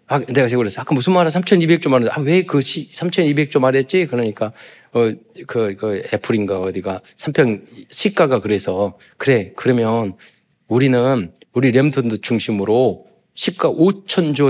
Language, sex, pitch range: Korean, male, 120-175 Hz